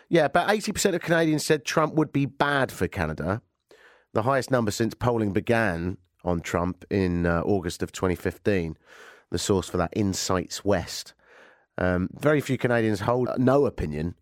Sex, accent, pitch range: male, British, 90-125 Hz